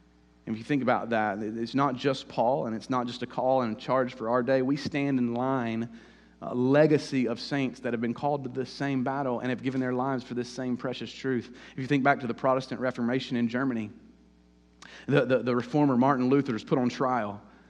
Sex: male